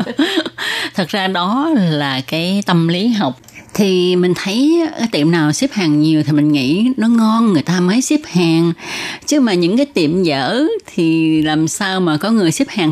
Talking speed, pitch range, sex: 195 wpm, 160-220 Hz, female